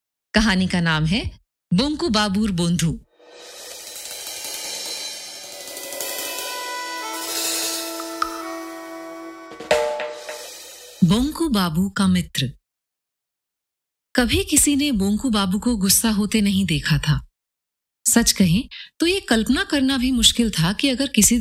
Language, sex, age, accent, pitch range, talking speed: Hindi, female, 30-49, native, 175-260 Hz, 95 wpm